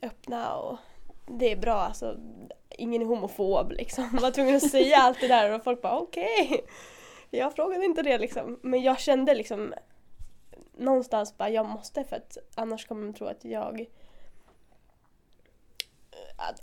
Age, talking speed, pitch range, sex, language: 10-29, 160 wpm, 230-260 Hz, female, Swedish